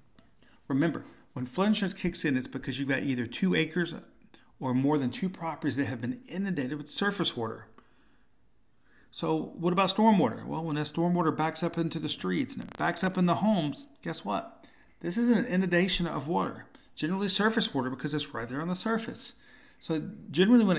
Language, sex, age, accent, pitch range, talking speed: English, male, 40-59, American, 130-175 Hz, 190 wpm